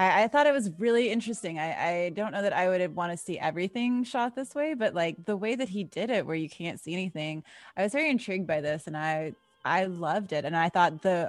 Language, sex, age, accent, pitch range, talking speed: English, female, 20-39, American, 185-285 Hz, 255 wpm